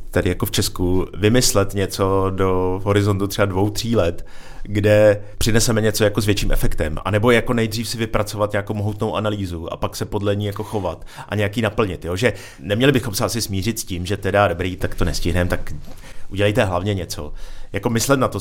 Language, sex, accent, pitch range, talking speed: Czech, male, native, 95-110 Hz, 195 wpm